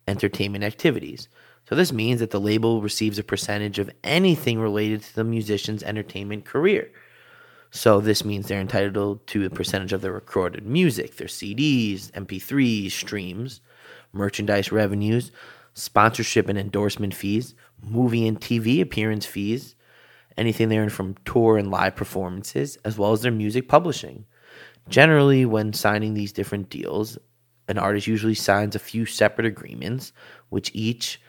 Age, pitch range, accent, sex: 20-39, 100-115 Hz, American, male